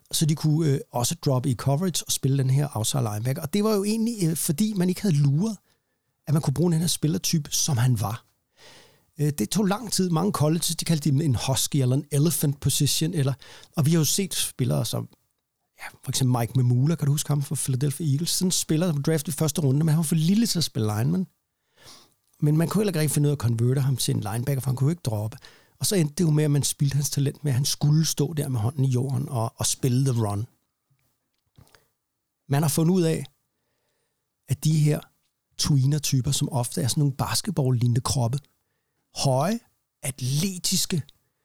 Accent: native